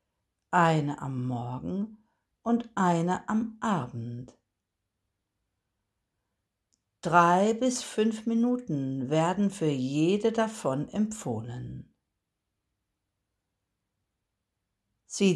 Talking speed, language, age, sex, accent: 65 wpm, German, 60-79, female, German